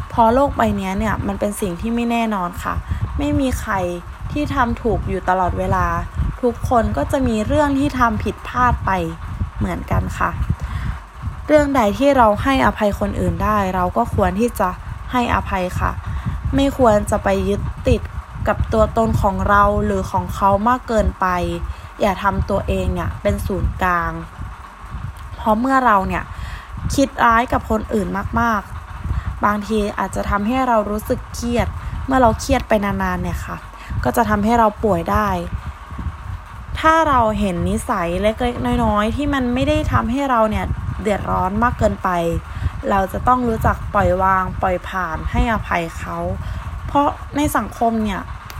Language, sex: Thai, female